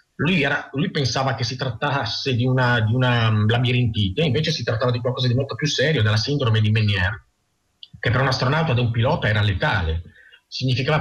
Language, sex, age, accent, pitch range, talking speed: Italian, male, 40-59, native, 110-140 Hz, 195 wpm